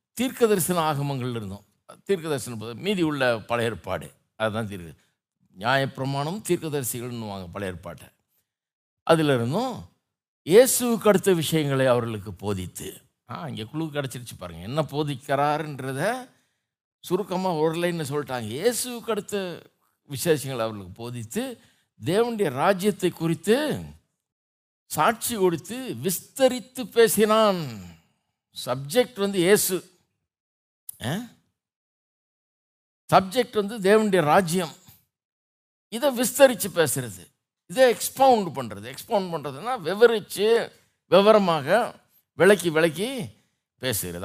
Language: Tamil